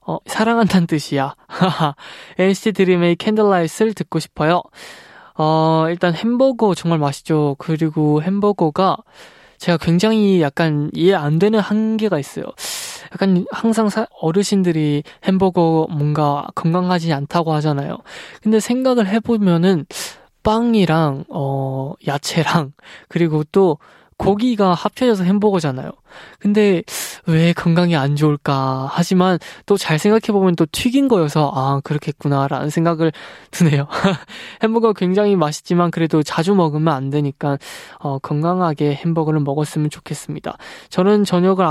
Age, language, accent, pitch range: 20-39, Korean, native, 150-195 Hz